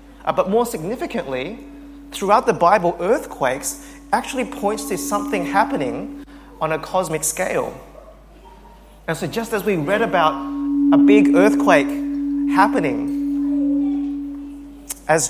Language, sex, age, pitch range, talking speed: English, male, 30-49, 140-215 Hz, 115 wpm